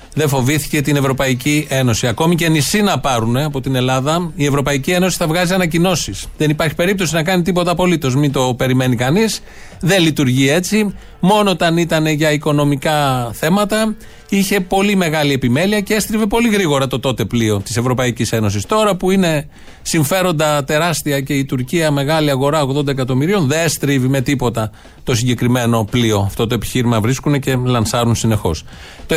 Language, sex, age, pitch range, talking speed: Greek, male, 30-49, 130-175 Hz, 165 wpm